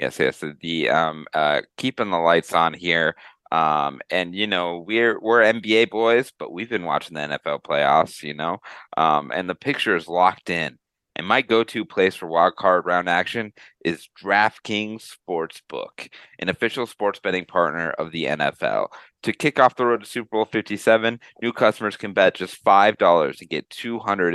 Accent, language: American, English